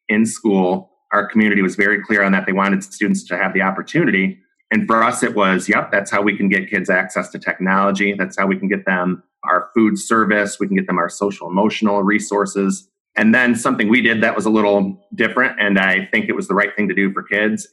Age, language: 30-49, English